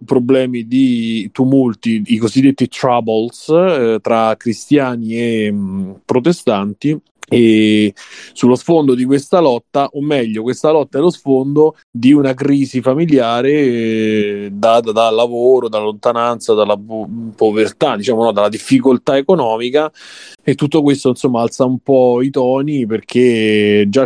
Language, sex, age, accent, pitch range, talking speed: Italian, male, 20-39, native, 110-135 Hz, 130 wpm